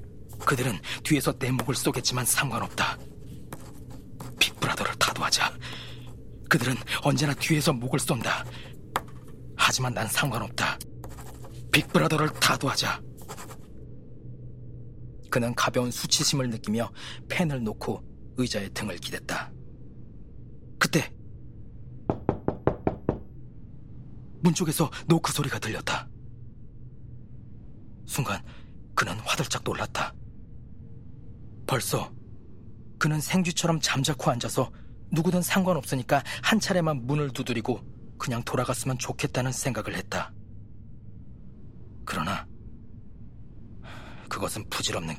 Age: 40-59